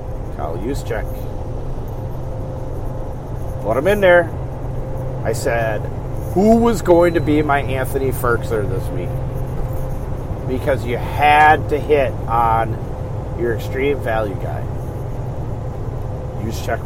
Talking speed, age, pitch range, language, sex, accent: 105 wpm, 40-59, 115-130 Hz, English, male, American